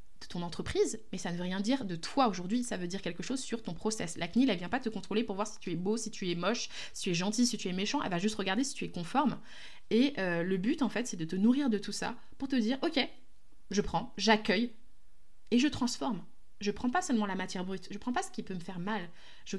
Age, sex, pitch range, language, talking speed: 20-39, female, 190-230 Hz, French, 280 wpm